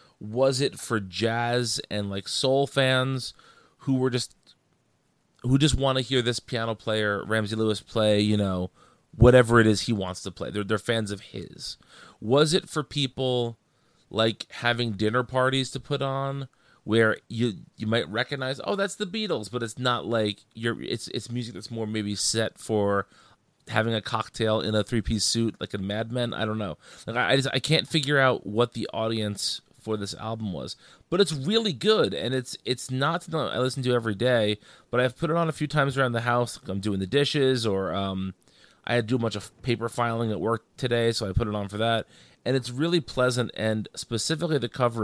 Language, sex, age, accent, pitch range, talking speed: English, male, 30-49, American, 105-130 Hz, 200 wpm